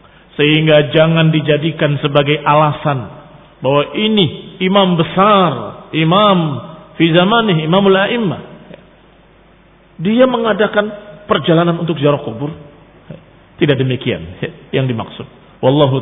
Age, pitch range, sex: 50-69, 160-200 Hz, male